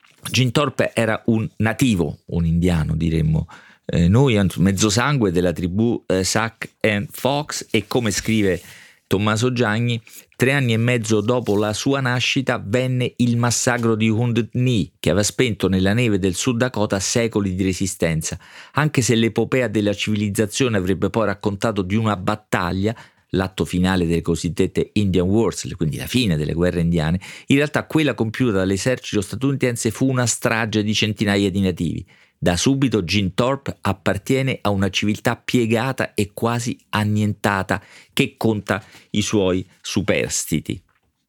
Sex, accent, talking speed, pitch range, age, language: male, native, 145 wpm, 95-120 Hz, 40-59, Italian